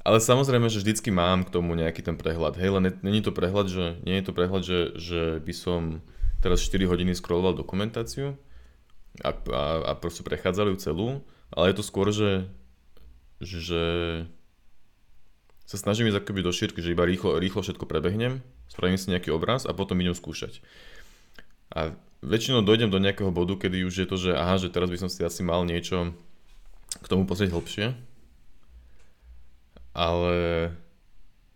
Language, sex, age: Slovak, male, 20-39